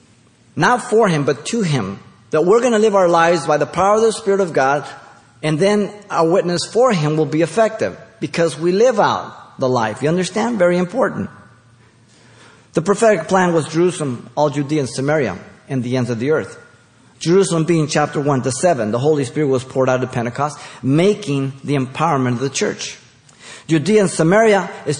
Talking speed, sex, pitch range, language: 190 wpm, male, 120-170 Hz, English